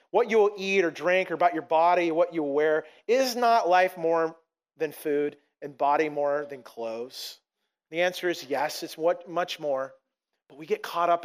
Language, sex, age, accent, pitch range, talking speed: English, male, 40-59, American, 165-220 Hz, 200 wpm